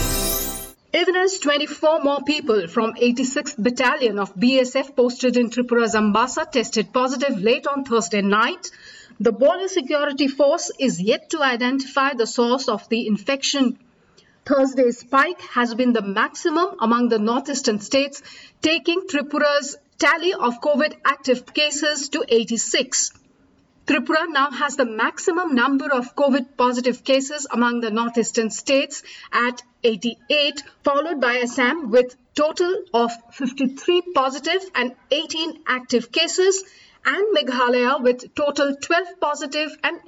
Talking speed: 130 wpm